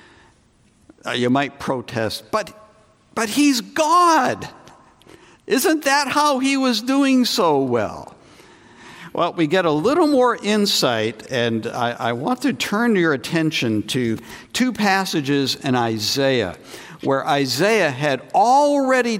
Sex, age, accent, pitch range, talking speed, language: male, 60-79, American, 135-215 Hz, 125 wpm, English